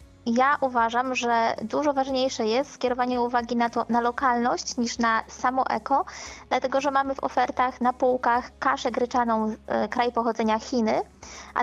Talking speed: 155 wpm